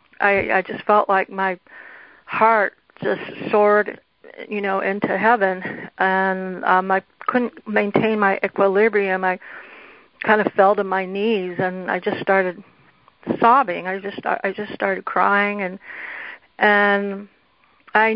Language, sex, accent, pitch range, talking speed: English, female, American, 190-220 Hz, 135 wpm